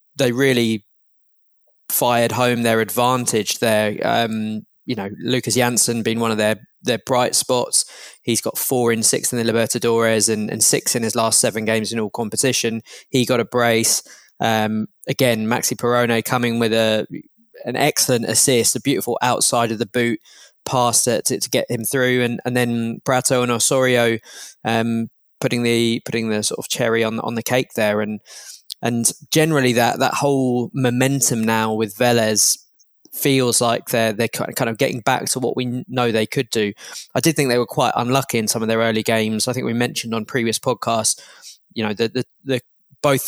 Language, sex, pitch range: English, male, 110-125 Hz